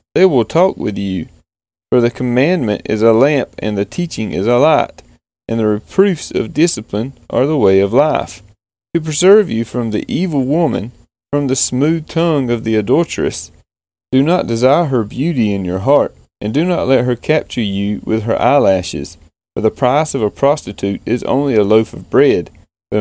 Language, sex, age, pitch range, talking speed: English, male, 30-49, 100-140 Hz, 190 wpm